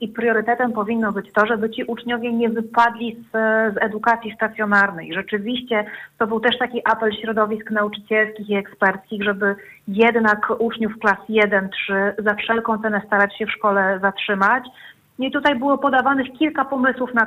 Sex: female